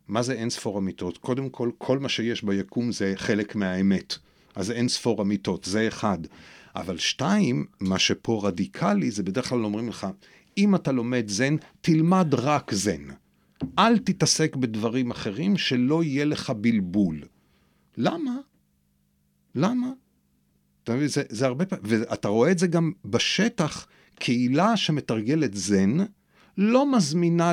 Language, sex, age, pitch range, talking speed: Hebrew, male, 50-69, 115-180 Hz, 135 wpm